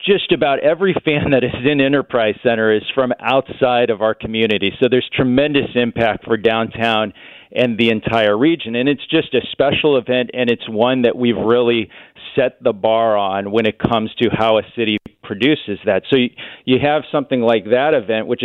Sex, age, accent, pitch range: male, 40-59, American, 115-140 Hz